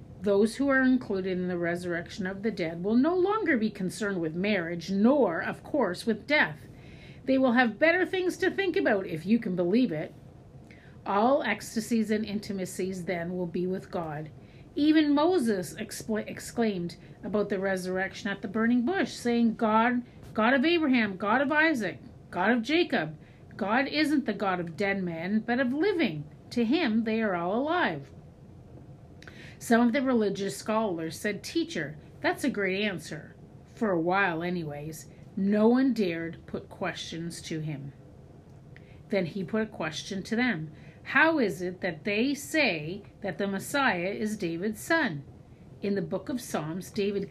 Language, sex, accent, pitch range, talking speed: English, female, American, 180-245 Hz, 165 wpm